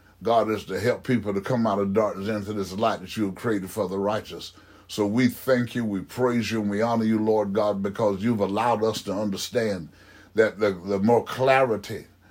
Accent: American